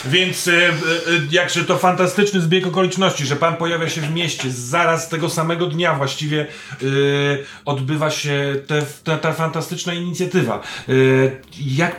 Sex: male